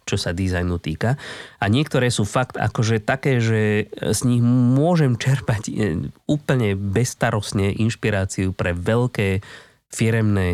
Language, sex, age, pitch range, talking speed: Slovak, male, 20-39, 100-130 Hz, 120 wpm